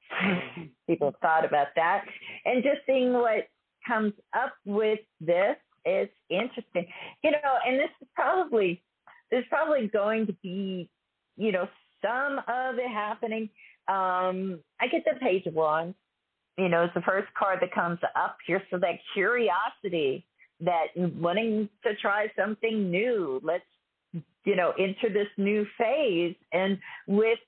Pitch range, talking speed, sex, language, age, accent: 175-235 Hz, 140 wpm, female, English, 50-69, American